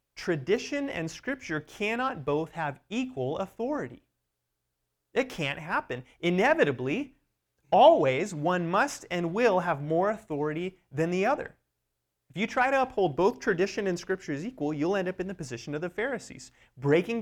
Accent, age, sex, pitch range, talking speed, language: American, 30-49, male, 130-205 Hz, 155 wpm, English